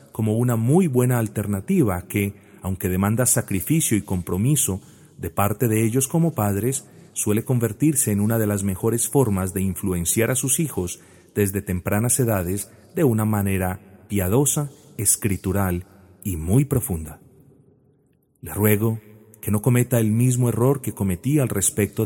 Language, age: Spanish, 40-59